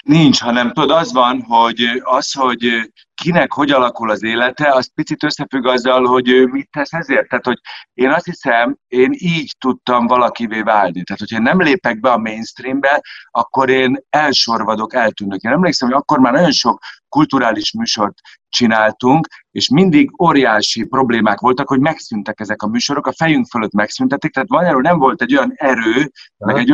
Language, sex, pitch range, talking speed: Hungarian, male, 115-145 Hz, 170 wpm